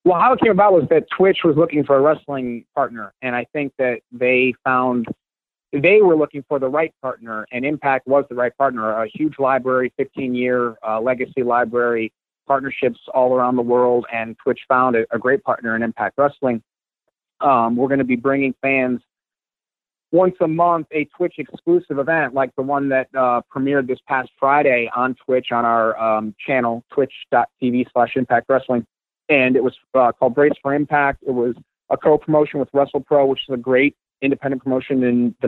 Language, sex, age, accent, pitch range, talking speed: English, male, 30-49, American, 120-140 Hz, 190 wpm